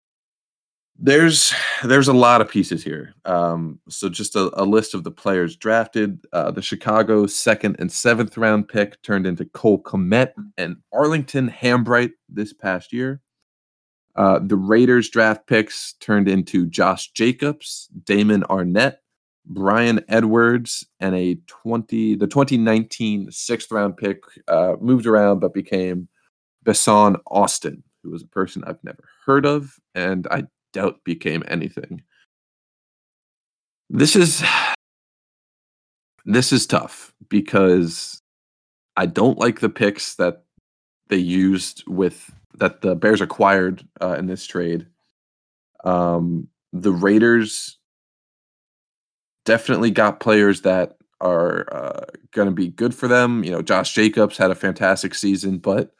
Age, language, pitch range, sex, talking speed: 20-39, English, 95-120 Hz, male, 130 wpm